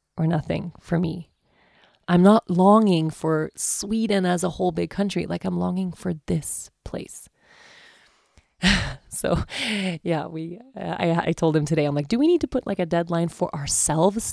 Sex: female